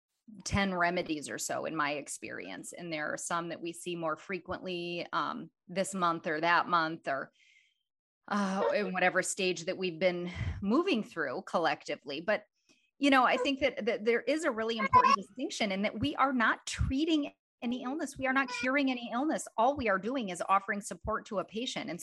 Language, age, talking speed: English, 30-49, 195 wpm